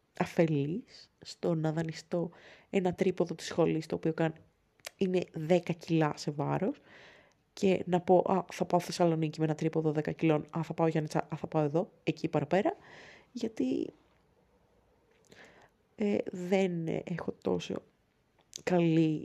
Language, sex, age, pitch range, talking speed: Greek, female, 20-39, 155-190 Hz, 135 wpm